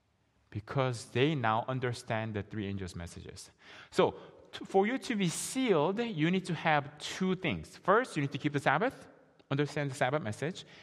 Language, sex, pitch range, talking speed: English, male, 100-150 Hz, 170 wpm